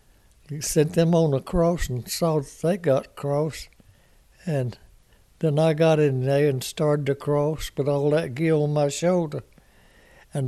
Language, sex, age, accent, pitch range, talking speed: English, male, 60-79, American, 125-155 Hz, 160 wpm